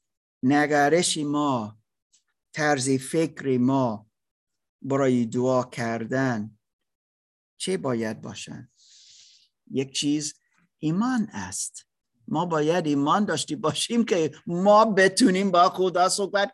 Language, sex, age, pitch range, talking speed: Persian, male, 50-69, 145-225 Hz, 95 wpm